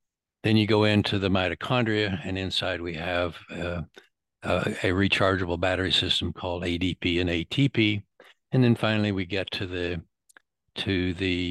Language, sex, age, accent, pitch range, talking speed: English, male, 60-79, American, 90-110 Hz, 150 wpm